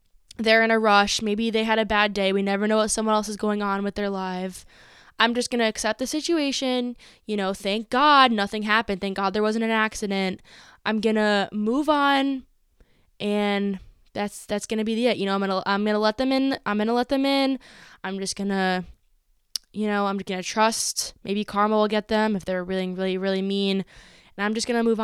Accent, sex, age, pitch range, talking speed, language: American, female, 20-39, 200-245 Hz, 210 wpm, English